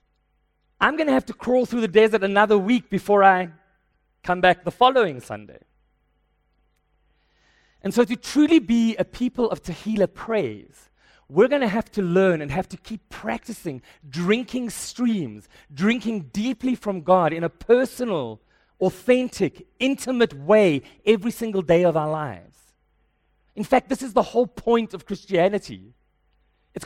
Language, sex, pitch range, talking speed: English, male, 155-230 Hz, 150 wpm